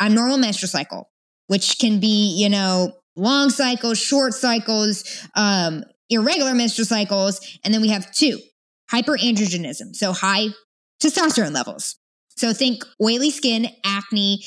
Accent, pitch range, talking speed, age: American, 200-255 Hz, 130 wpm, 20-39